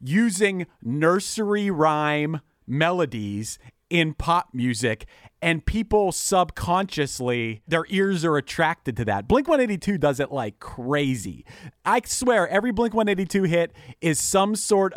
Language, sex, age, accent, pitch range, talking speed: English, male, 40-59, American, 130-185 Hz, 125 wpm